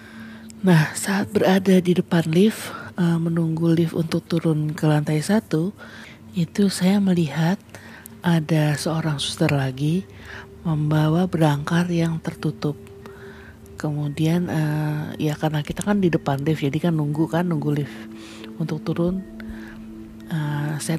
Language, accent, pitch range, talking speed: Indonesian, native, 145-170 Hz, 115 wpm